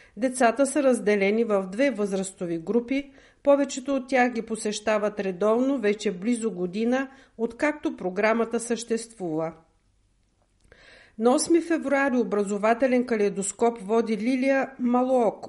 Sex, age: female, 50-69